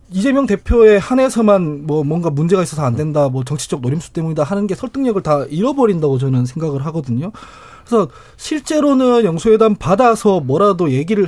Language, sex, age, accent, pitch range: Korean, male, 20-39, native, 145-225 Hz